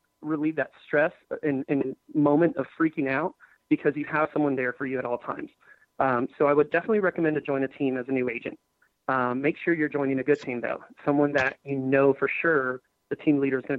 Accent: American